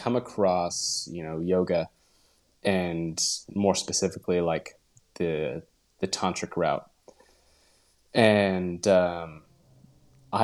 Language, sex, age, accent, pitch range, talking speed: English, male, 20-39, American, 80-95 Hz, 90 wpm